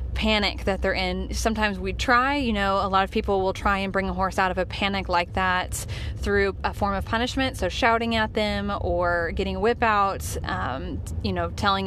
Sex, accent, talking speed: female, American, 220 wpm